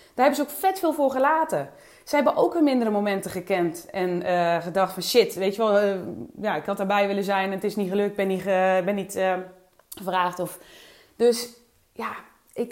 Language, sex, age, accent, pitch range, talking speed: English, female, 20-39, Dutch, 185-230 Hz, 205 wpm